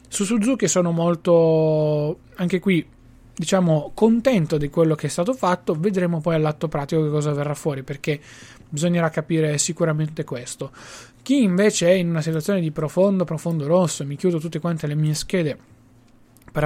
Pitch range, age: 150-185 Hz, 20-39